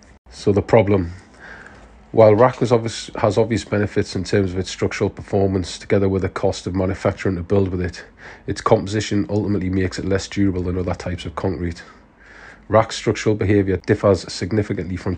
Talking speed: 165 wpm